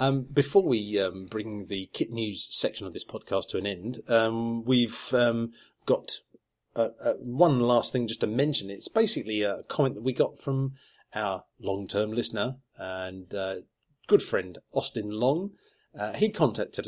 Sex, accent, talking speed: male, British, 160 wpm